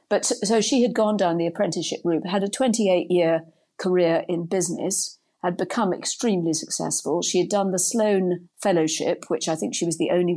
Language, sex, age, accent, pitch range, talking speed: English, female, 40-59, British, 170-215 Hz, 185 wpm